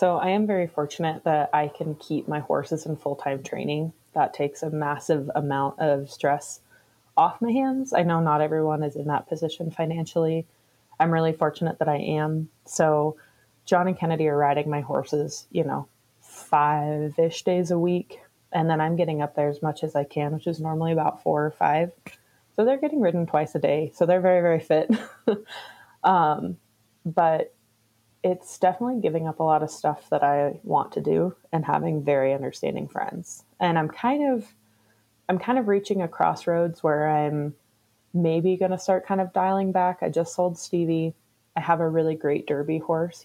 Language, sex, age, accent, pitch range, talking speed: English, female, 20-39, American, 150-175 Hz, 185 wpm